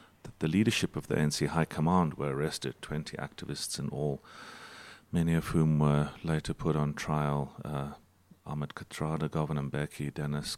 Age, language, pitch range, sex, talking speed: 40-59, English, 75-85 Hz, male, 155 wpm